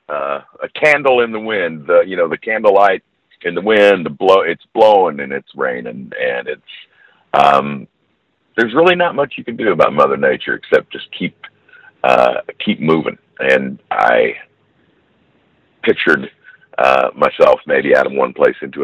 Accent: American